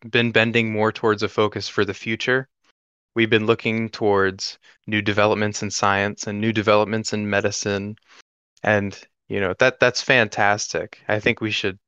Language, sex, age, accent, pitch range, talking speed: English, male, 20-39, American, 100-115 Hz, 160 wpm